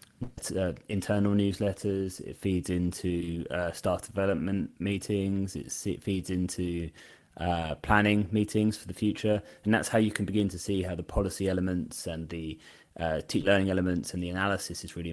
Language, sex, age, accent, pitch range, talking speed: English, male, 20-39, British, 85-100 Hz, 165 wpm